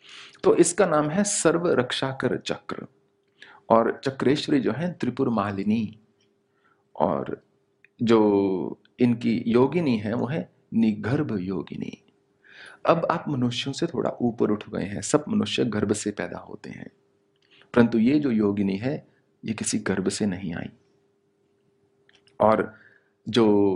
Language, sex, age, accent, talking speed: English, male, 40-59, Indian, 130 wpm